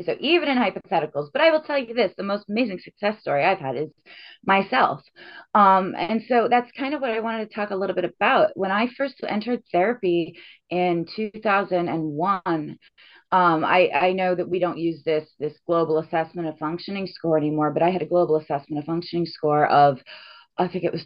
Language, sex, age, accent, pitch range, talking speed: English, female, 30-49, American, 155-210 Hz, 200 wpm